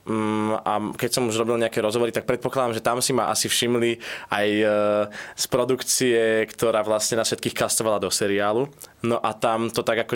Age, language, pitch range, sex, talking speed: 20-39, Slovak, 105-125 Hz, male, 185 wpm